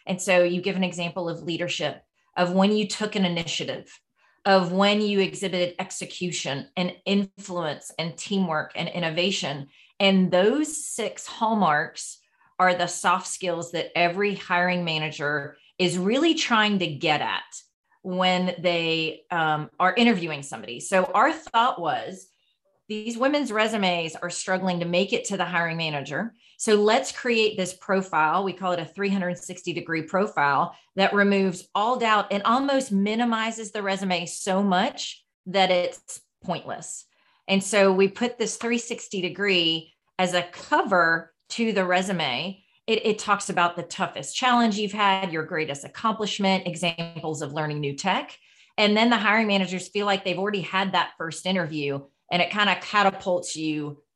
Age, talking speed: 30-49, 155 wpm